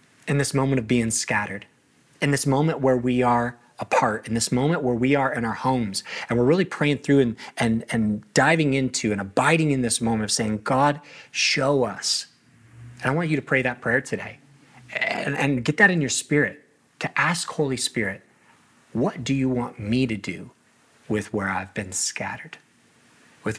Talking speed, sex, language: 190 wpm, male, English